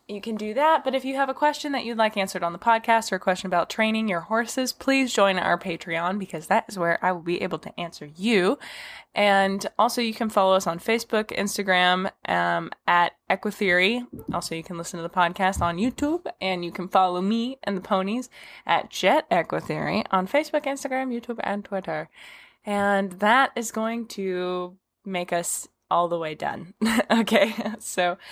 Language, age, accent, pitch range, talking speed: English, 10-29, American, 175-230 Hz, 195 wpm